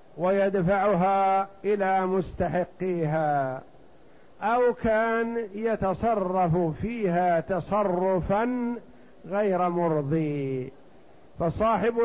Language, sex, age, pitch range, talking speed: Arabic, male, 50-69, 175-210 Hz, 55 wpm